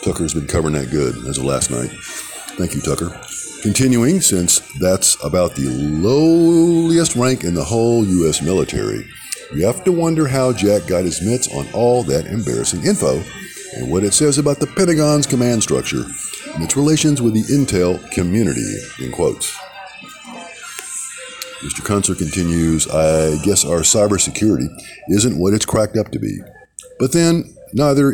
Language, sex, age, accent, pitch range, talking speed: English, male, 50-69, American, 95-150 Hz, 155 wpm